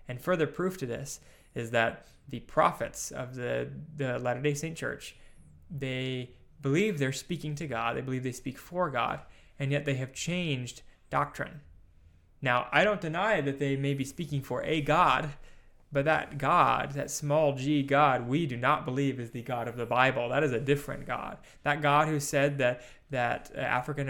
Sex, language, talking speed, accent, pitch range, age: male, English, 185 wpm, American, 125-150 Hz, 20-39